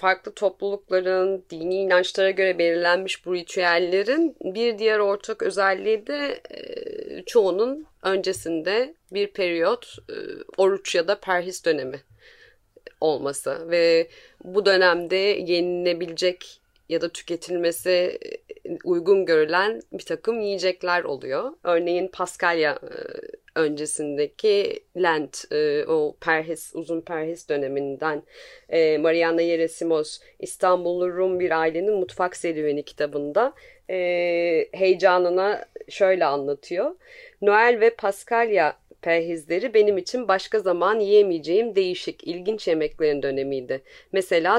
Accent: native